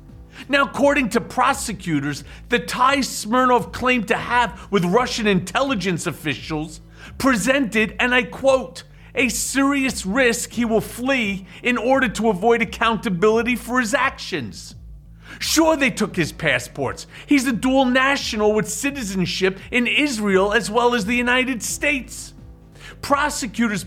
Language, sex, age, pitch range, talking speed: English, male, 40-59, 210-270 Hz, 130 wpm